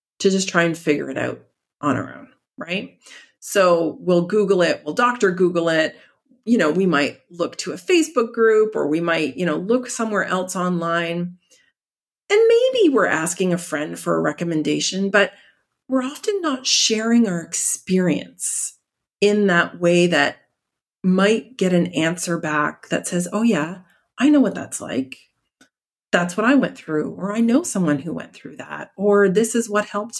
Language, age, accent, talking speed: English, 40-59, American, 175 wpm